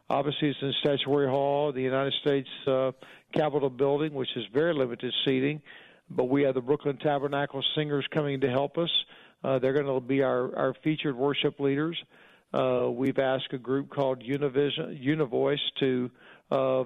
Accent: American